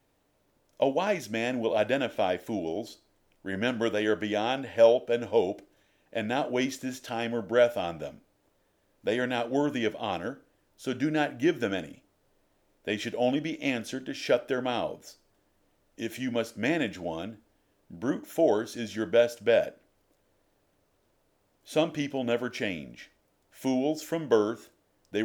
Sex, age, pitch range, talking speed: male, 50-69, 105-130 Hz, 145 wpm